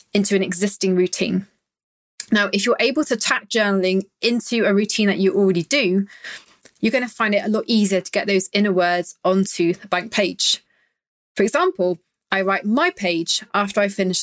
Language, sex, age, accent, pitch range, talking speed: English, female, 30-49, British, 190-235 Hz, 180 wpm